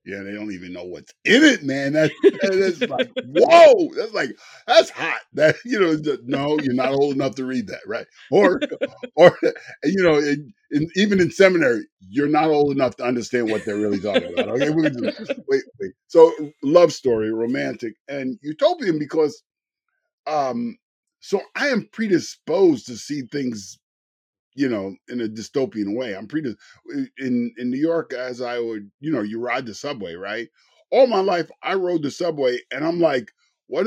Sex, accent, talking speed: male, American, 180 wpm